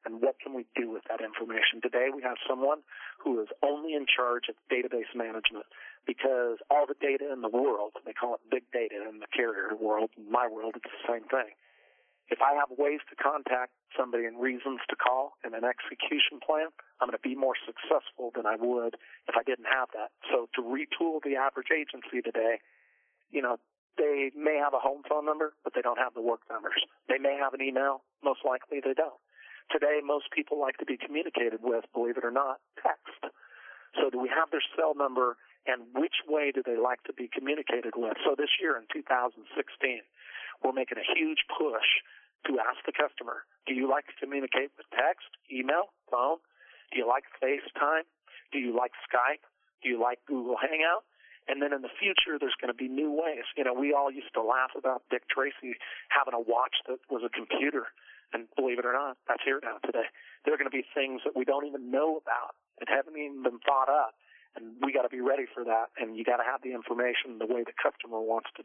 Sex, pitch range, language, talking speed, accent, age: male, 120-145 Hz, English, 215 wpm, American, 40-59